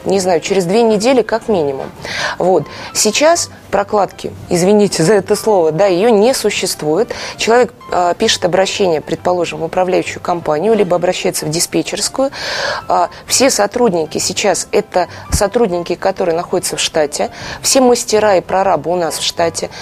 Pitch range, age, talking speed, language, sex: 175-215 Hz, 20-39, 140 wpm, Russian, female